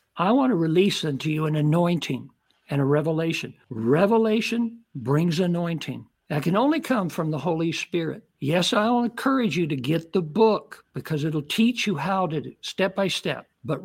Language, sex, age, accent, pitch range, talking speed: English, male, 60-79, American, 165-225 Hz, 180 wpm